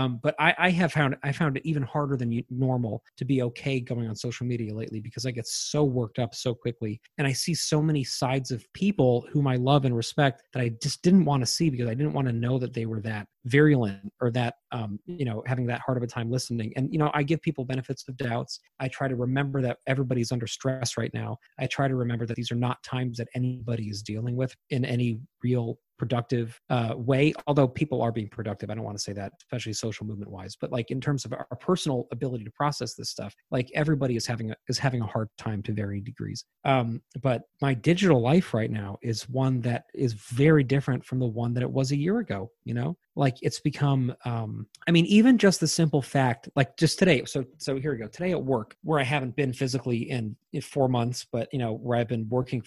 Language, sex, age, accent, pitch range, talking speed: English, male, 30-49, American, 115-140 Hz, 240 wpm